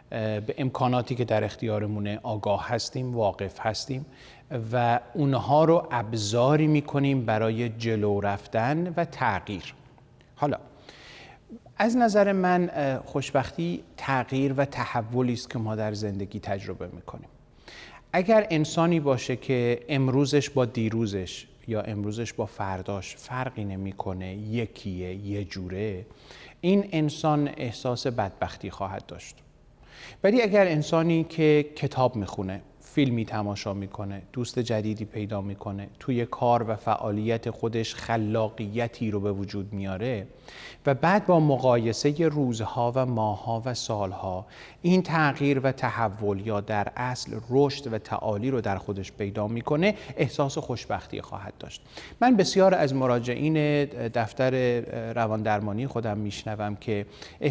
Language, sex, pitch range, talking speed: Persian, male, 105-140 Hz, 120 wpm